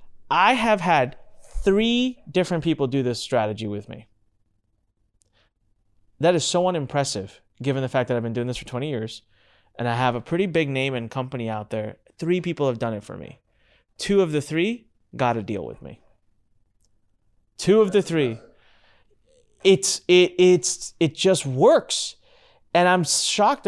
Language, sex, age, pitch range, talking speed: English, male, 30-49, 115-185 Hz, 165 wpm